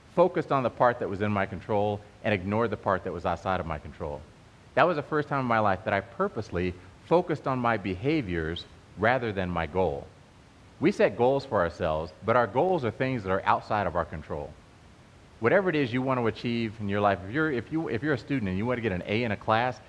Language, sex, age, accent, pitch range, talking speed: English, male, 30-49, American, 95-130 Hz, 240 wpm